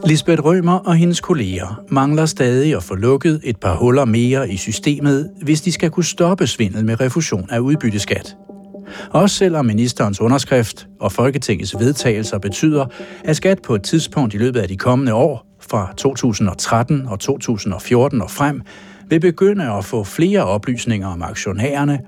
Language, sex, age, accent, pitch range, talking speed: Danish, male, 60-79, native, 110-170 Hz, 160 wpm